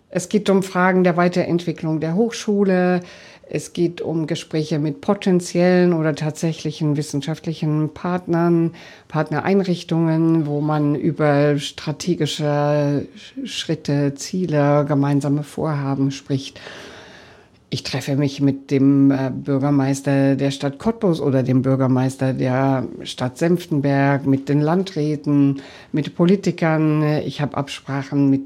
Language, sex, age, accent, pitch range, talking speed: German, female, 50-69, German, 140-170 Hz, 110 wpm